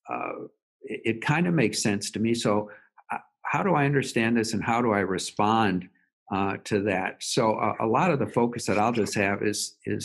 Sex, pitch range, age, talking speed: male, 100-120 Hz, 50-69, 220 wpm